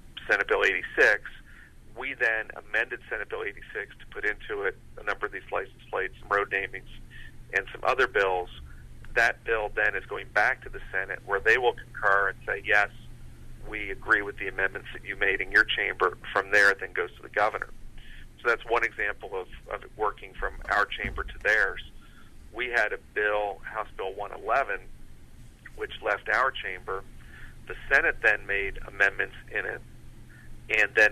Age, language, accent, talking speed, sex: 40-59, English, American, 180 wpm, male